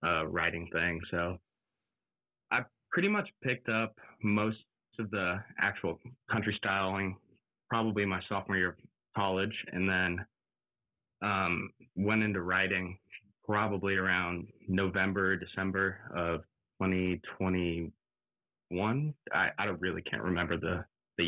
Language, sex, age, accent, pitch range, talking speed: English, male, 20-39, American, 90-100 Hz, 115 wpm